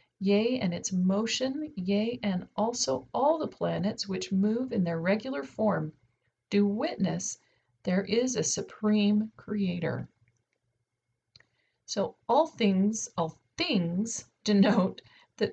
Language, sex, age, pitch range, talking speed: English, female, 40-59, 185-235 Hz, 115 wpm